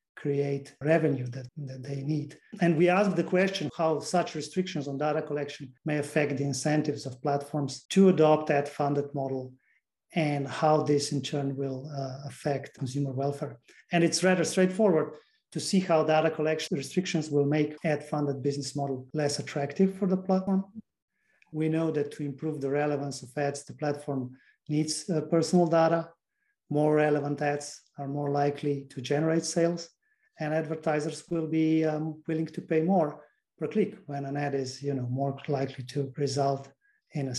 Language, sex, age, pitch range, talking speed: English, male, 40-59, 140-160 Hz, 165 wpm